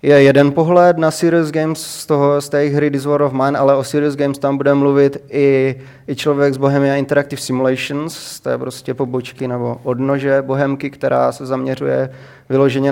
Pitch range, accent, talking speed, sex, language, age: 130-140 Hz, native, 180 wpm, male, Czech, 20-39